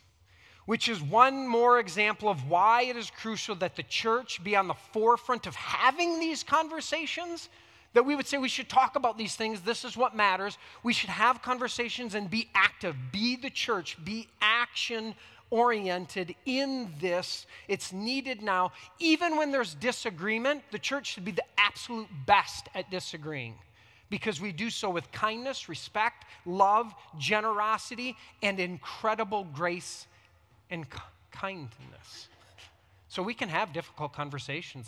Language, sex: English, male